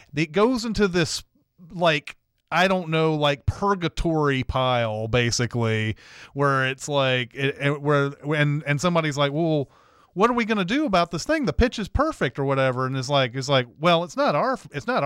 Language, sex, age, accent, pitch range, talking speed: English, male, 30-49, American, 130-165 Hz, 190 wpm